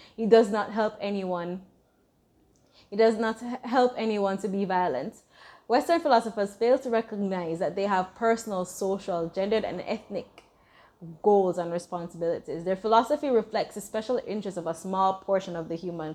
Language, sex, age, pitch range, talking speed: English, female, 20-39, 180-230 Hz, 155 wpm